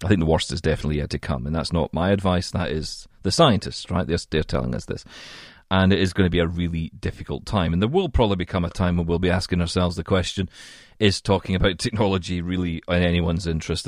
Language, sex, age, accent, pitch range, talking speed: English, male, 40-59, British, 90-105 Hz, 240 wpm